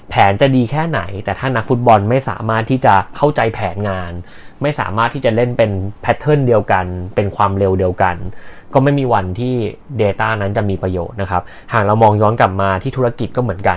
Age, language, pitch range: 20-39, Thai, 100-120 Hz